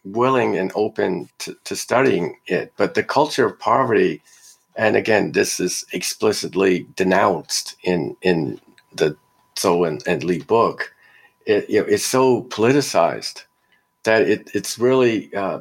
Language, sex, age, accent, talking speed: English, male, 50-69, American, 140 wpm